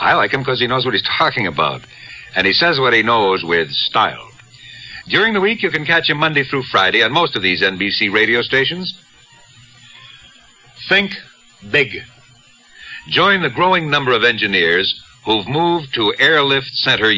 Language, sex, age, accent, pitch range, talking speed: English, male, 60-79, American, 125-180 Hz, 170 wpm